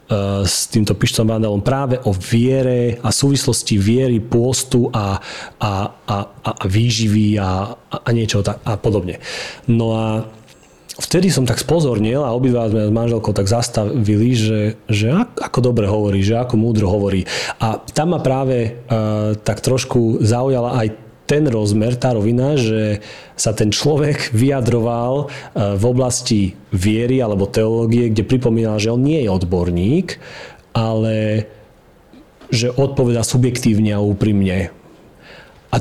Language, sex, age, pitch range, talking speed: Slovak, male, 40-59, 105-125 Hz, 135 wpm